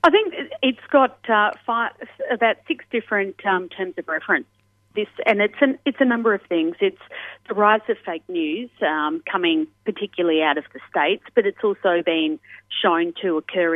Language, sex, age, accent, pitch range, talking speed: English, female, 40-59, Australian, 170-245 Hz, 185 wpm